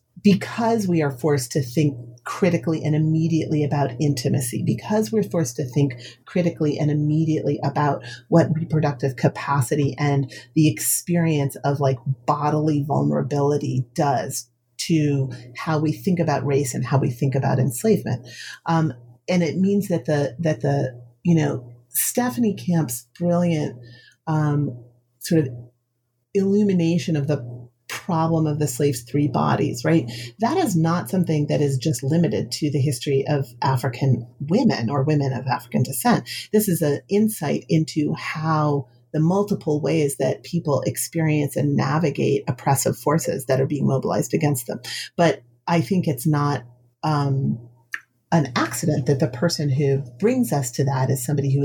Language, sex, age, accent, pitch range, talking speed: English, female, 40-59, American, 130-160 Hz, 150 wpm